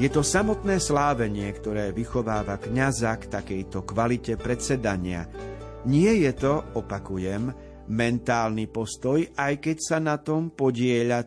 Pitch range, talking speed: 105-140 Hz, 120 wpm